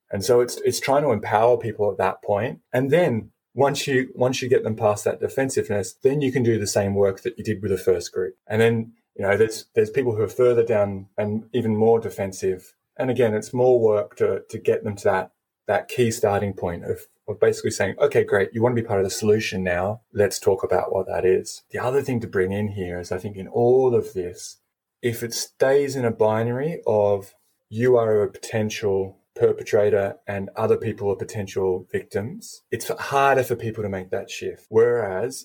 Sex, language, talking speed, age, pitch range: male, English, 215 wpm, 20-39, 105-130 Hz